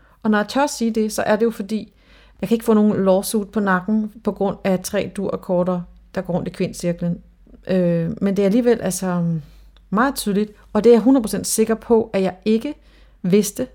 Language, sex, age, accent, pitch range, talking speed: Danish, female, 40-59, native, 180-215 Hz, 220 wpm